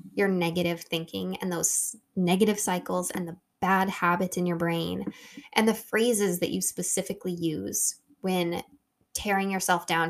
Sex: female